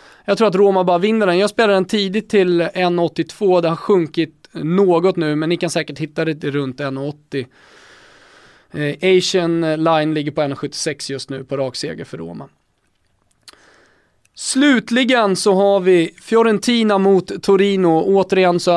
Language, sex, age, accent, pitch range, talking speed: English, male, 20-39, Swedish, 155-190 Hz, 150 wpm